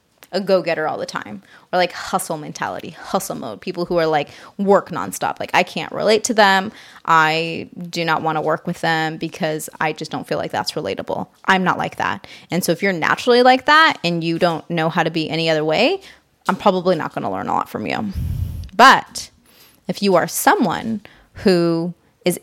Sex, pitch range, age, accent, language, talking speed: female, 165-210 Hz, 20-39, American, English, 205 wpm